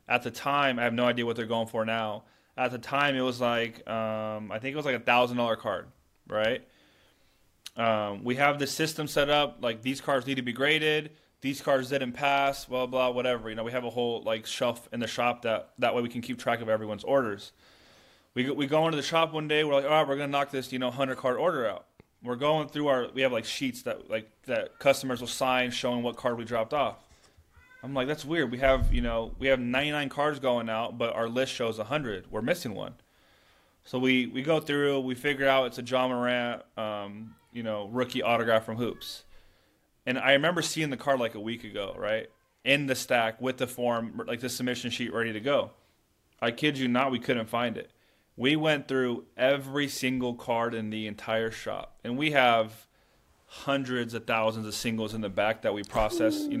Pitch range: 115-140 Hz